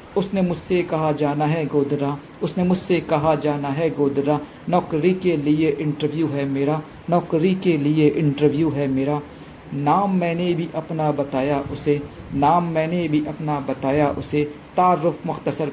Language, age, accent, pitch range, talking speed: Hindi, 50-69, native, 145-165 Hz, 145 wpm